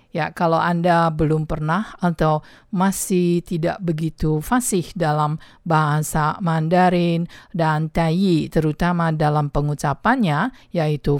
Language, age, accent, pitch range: Chinese, 50-69, Indonesian, 150-180 Hz